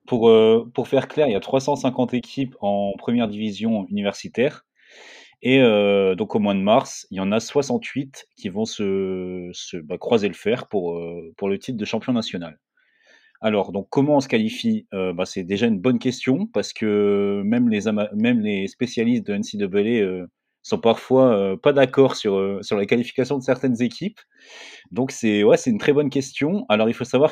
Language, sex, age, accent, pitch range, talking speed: French, male, 30-49, French, 105-160 Hz, 190 wpm